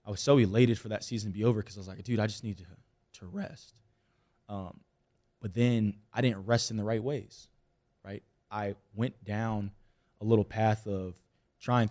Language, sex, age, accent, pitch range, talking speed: English, male, 20-39, American, 100-115 Hz, 200 wpm